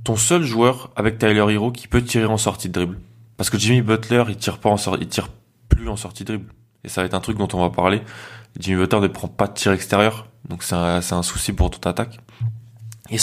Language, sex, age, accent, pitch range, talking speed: French, male, 20-39, French, 95-110 Hz, 260 wpm